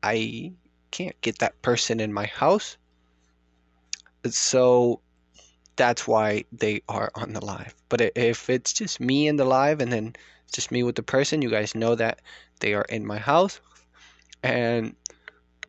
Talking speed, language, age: 155 wpm, English, 20-39